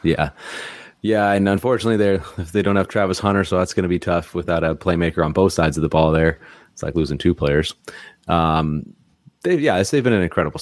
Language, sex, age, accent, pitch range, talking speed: English, male, 30-49, American, 80-95 Hz, 220 wpm